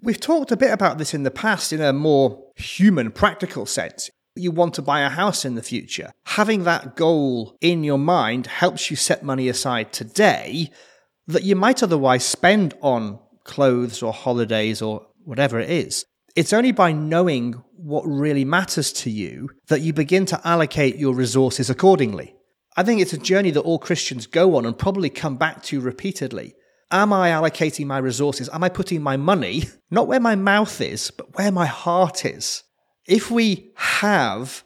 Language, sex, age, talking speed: English, male, 30-49, 180 wpm